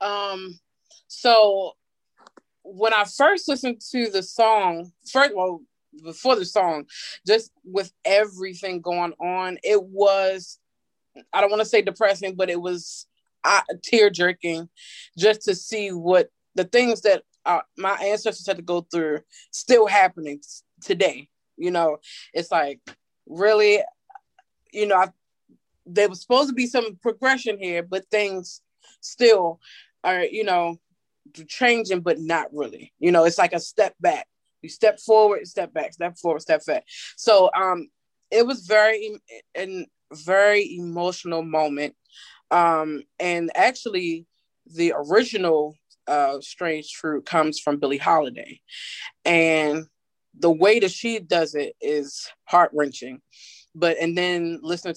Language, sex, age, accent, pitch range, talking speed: English, female, 20-39, American, 165-215 Hz, 135 wpm